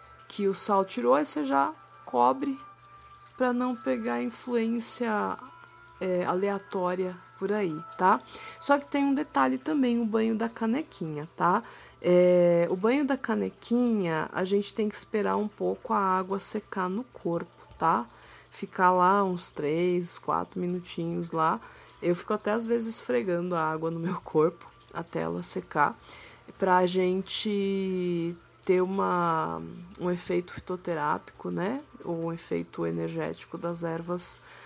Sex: female